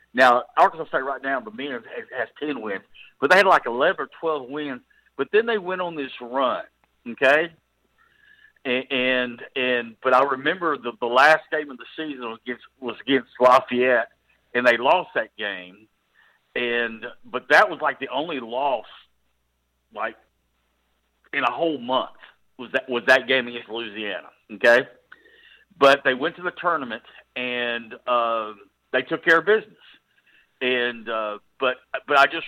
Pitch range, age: 115-155 Hz, 50-69